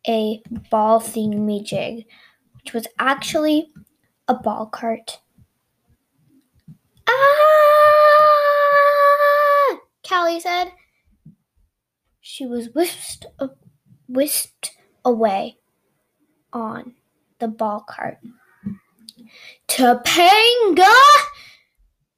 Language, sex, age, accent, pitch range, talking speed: English, female, 10-29, American, 245-385 Hz, 60 wpm